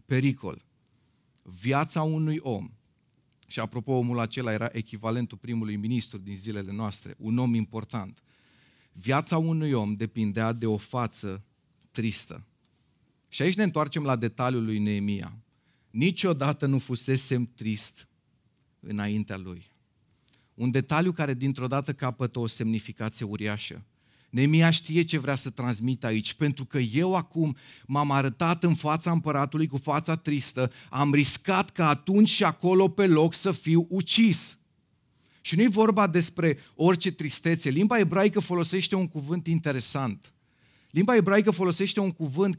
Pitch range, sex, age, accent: 120-175 Hz, male, 30-49, native